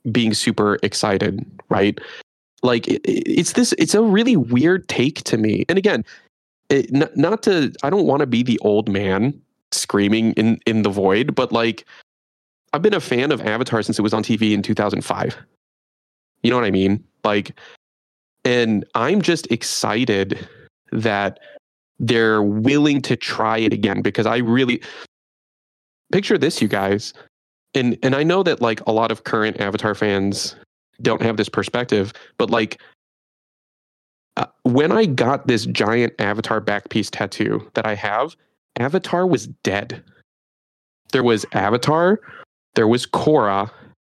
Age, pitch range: 20-39, 105-125 Hz